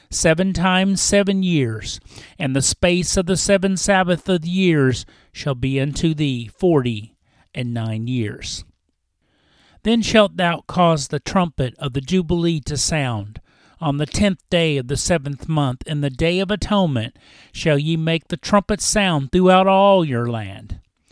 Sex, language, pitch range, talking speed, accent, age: male, English, 130-185 Hz, 160 wpm, American, 50-69